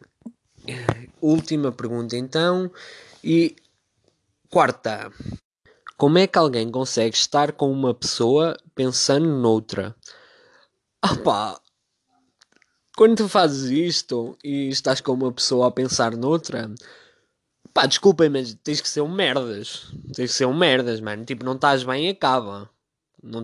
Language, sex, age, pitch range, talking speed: Portuguese, male, 20-39, 130-190 Hz, 130 wpm